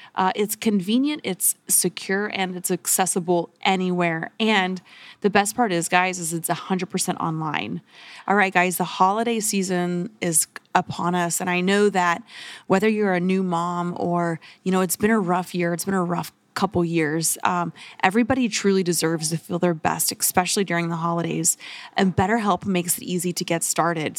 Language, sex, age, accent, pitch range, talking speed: English, female, 30-49, American, 175-220 Hz, 175 wpm